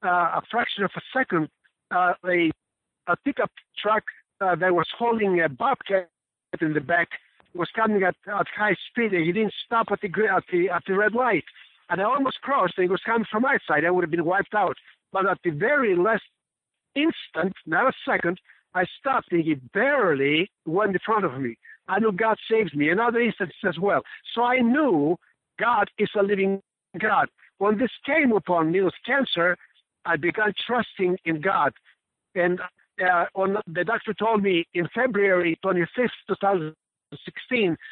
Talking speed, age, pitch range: 180 wpm, 60-79, 175-230 Hz